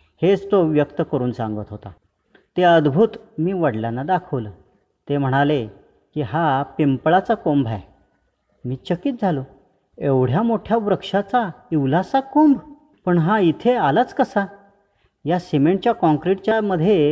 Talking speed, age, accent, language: 120 wpm, 40-59, native, Marathi